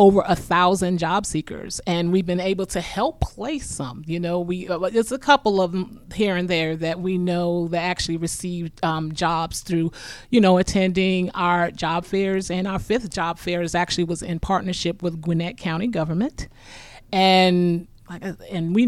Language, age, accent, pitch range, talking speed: English, 30-49, American, 165-185 Hz, 180 wpm